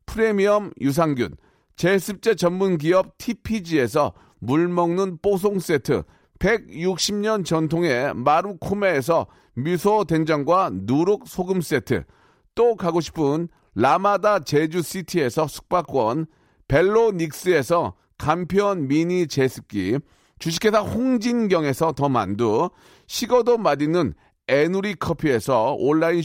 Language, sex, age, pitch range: Korean, male, 40-59, 160-215 Hz